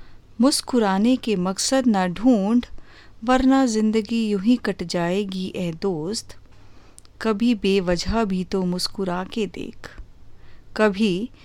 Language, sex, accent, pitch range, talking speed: Hindi, female, native, 180-225 Hz, 105 wpm